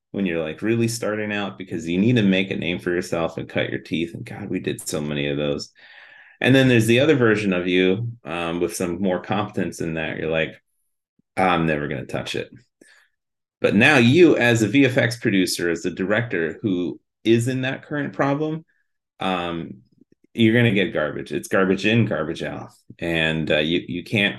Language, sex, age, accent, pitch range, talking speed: English, male, 30-49, American, 85-115 Hz, 195 wpm